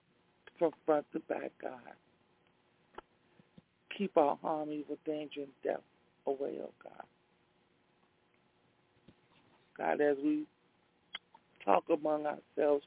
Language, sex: English, male